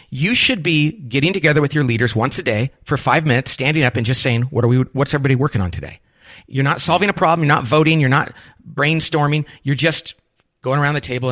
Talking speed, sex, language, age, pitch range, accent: 235 wpm, male, English, 40-59, 115-150 Hz, American